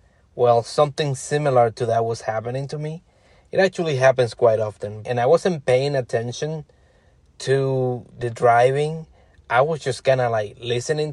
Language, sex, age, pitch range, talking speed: English, male, 20-39, 120-145 Hz, 155 wpm